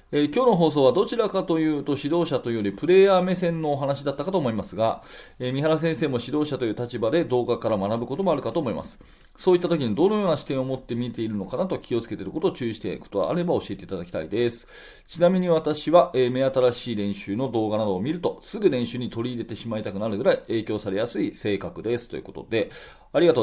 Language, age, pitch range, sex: Japanese, 30-49, 110-160 Hz, male